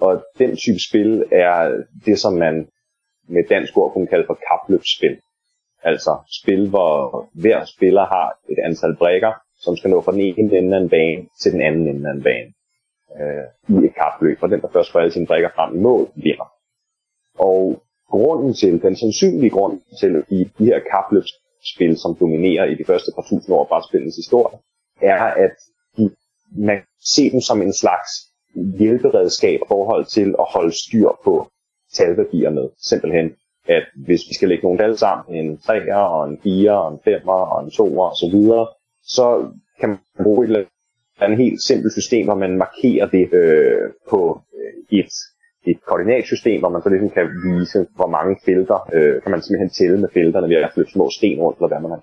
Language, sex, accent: Danish, male, native